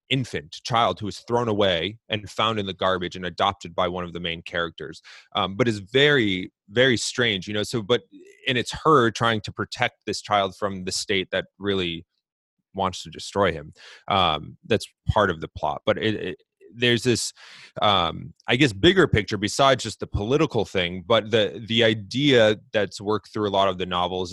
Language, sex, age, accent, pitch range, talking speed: English, male, 30-49, American, 95-115 Hz, 195 wpm